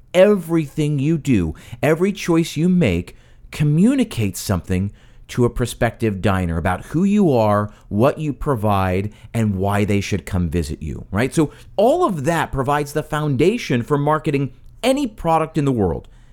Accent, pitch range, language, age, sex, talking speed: American, 105-155 Hz, English, 40-59, male, 155 wpm